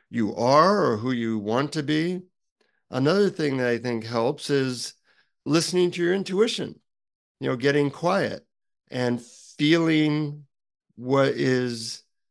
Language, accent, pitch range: English, American, 120-140 Hz